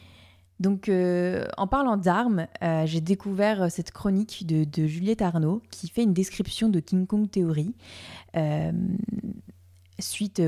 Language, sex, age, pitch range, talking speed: French, female, 20-39, 160-185 Hz, 140 wpm